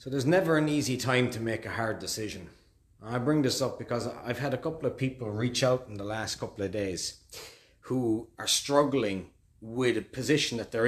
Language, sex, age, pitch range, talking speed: English, male, 30-49, 105-140 Hz, 210 wpm